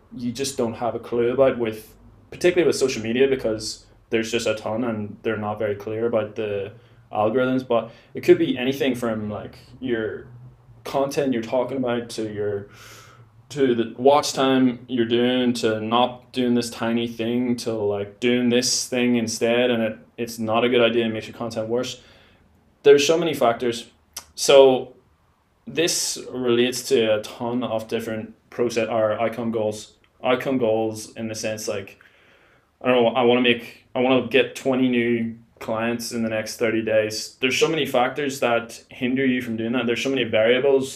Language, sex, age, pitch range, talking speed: English, male, 20-39, 110-125 Hz, 180 wpm